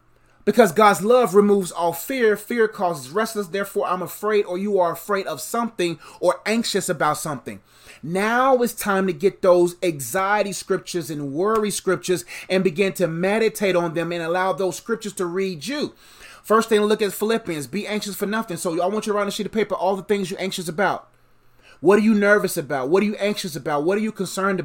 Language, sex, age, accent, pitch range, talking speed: English, male, 30-49, American, 175-220 Hz, 210 wpm